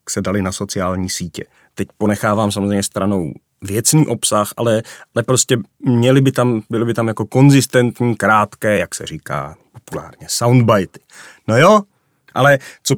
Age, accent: 30-49, native